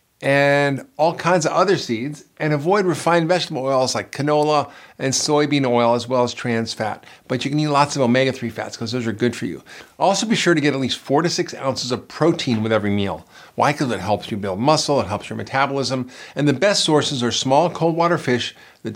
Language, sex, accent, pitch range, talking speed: English, male, American, 120-155 Hz, 230 wpm